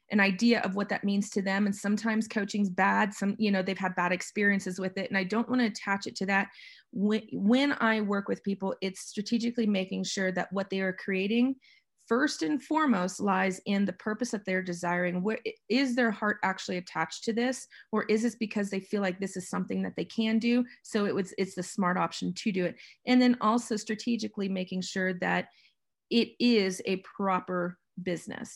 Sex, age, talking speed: female, 30-49, 210 wpm